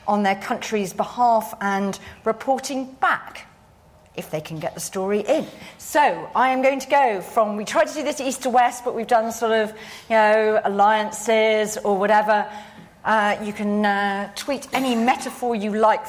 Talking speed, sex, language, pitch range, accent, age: 180 wpm, female, English, 200-245 Hz, British, 40-59